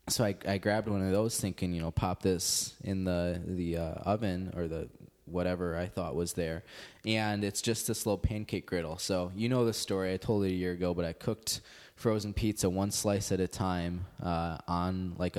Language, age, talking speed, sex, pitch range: English, 20-39, 215 wpm, male, 90-105 Hz